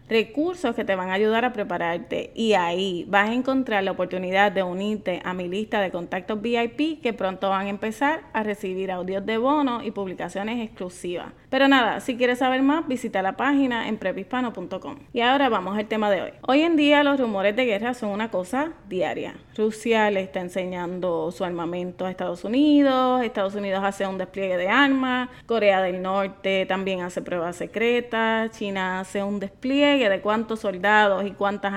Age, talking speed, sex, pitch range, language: 20-39, 185 wpm, female, 195-255 Hz, Spanish